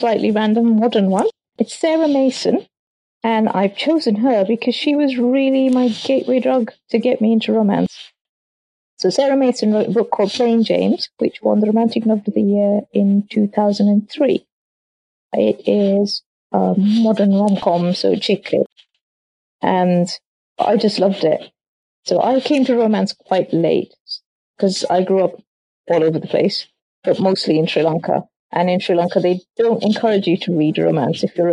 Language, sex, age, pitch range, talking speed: English, female, 30-49, 170-230 Hz, 165 wpm